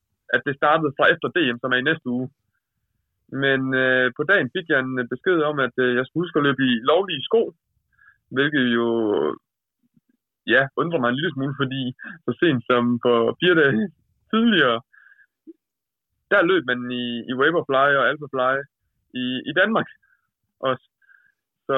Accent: native